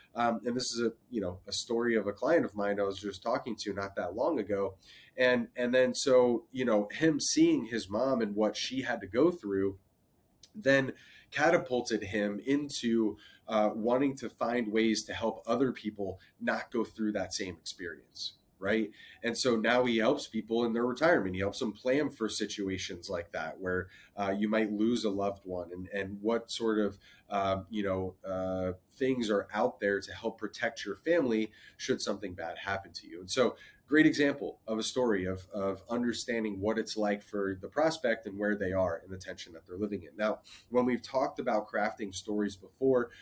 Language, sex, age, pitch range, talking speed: English, male, 30-49, 100-120 Hz, 200 wpm